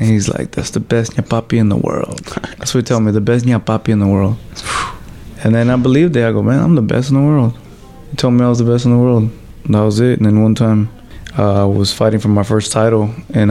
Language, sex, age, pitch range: English, male, 20-39, 105-120 Hz